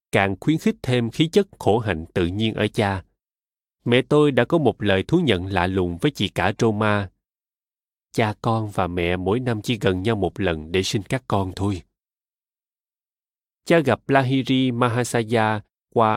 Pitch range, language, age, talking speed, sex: 100-135 Hz, Vietnamese, 20-39, 175 wpm, male